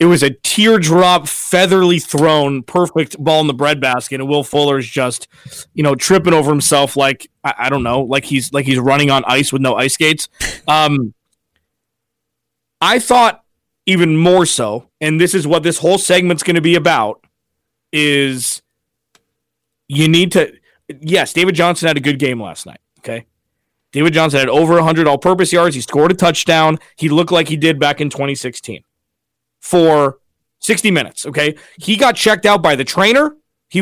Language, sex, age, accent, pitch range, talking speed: English, male, 30-49, American, 145-185 Hz, 175 wpm